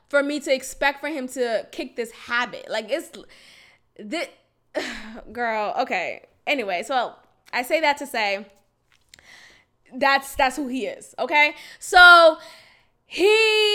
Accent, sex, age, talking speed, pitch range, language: American, female, 20-39, 130 wpm, 255-325 Hz, English